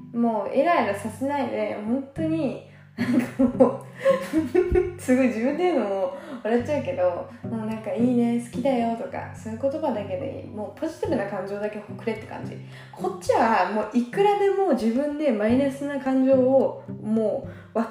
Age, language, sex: 20-39, Japanese, female